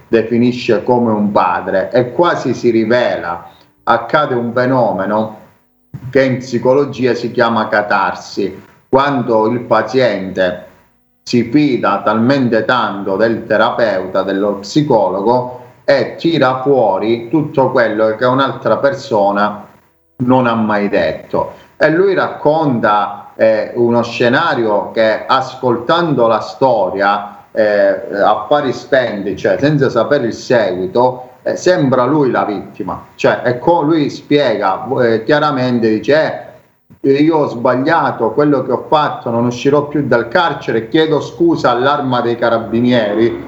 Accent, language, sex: native, Italian, male